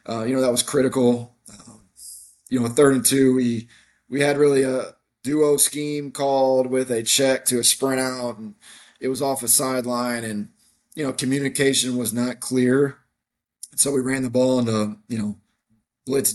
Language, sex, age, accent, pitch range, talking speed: English, male, 20-39, American, 120-140 Hz, 180 wpm